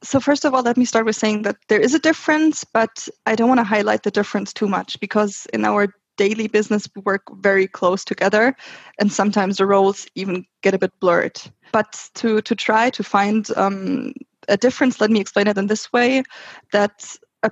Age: 20-39